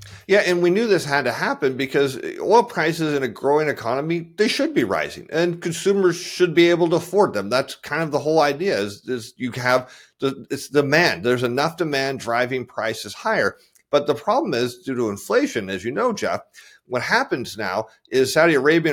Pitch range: 125-175 Hz